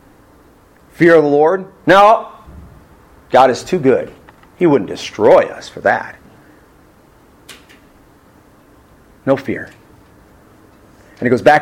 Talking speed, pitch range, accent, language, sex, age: 110 wpm, 120-190 Hz, American, English, male, 40-59